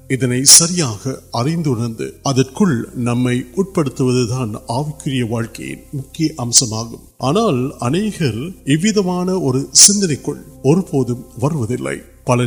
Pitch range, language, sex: 120-155 Hz, Urdu, male